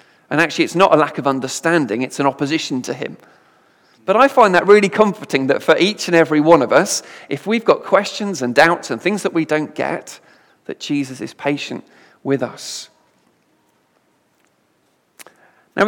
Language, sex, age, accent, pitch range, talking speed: English, male, 40-59, British, 145-185 Hz, 175 wpm